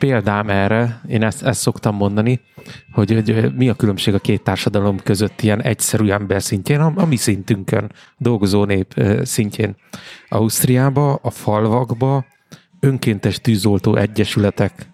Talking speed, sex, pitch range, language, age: 135 wpm, male, 105-120 Hz, Hungarian, 30-49